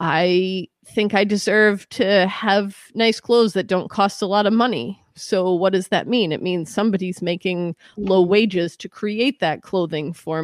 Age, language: 30-49, English